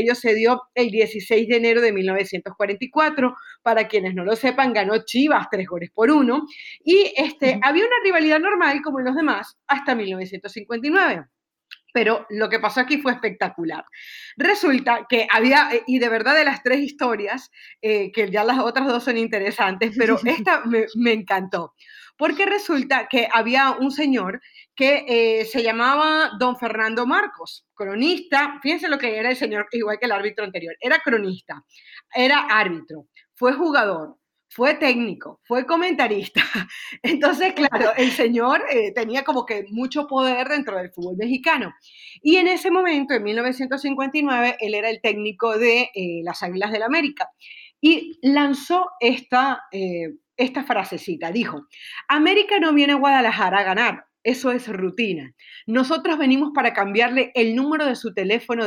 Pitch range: 215-280 Hz